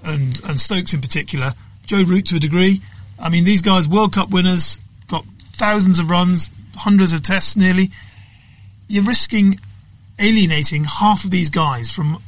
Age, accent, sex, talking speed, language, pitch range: 30-49, British, male, 160 wpm, English, 135-175 Hz